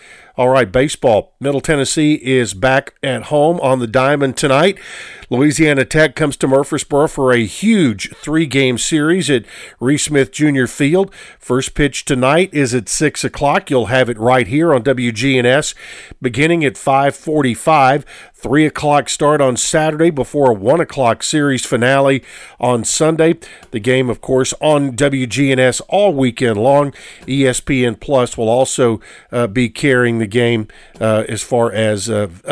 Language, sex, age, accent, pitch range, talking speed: English, male, 50-69, American, 125-155 Hz, 150 wpm